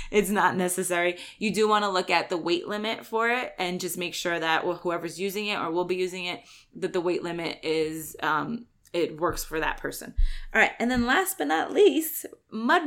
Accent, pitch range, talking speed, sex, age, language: American, 180-220 Hz, 225 wpm, female, 20-39, English